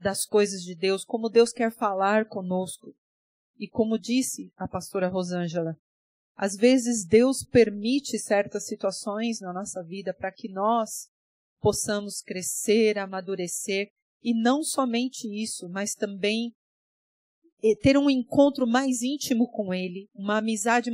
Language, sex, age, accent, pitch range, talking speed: Portuguese, female, 40-59, Brazilian, 205-250 Hz, 130 wpm